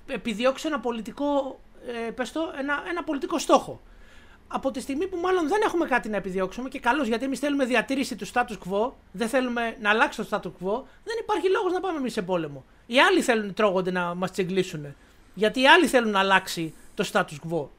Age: 30-49